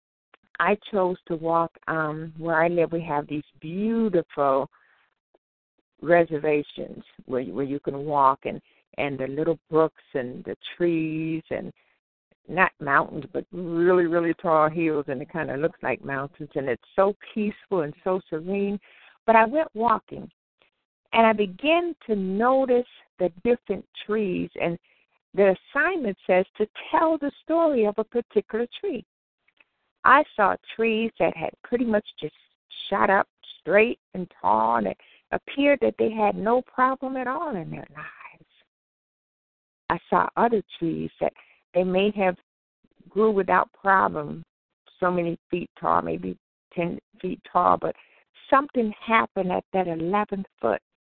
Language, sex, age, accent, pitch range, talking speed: English, female, 60-79, American, 160-220 Hz, 145 wpm